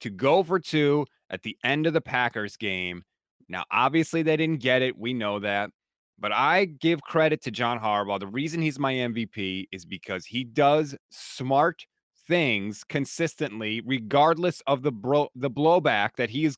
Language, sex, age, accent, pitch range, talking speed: English, male, 30-49, American, 125-170 Hz, 170 wpm